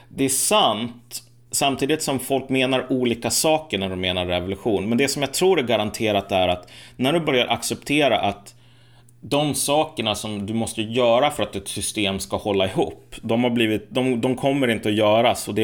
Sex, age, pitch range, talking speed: male, 30-49, 105-125 Hz, 195 wpm